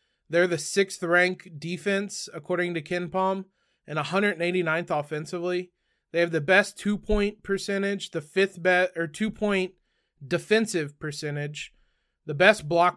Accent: American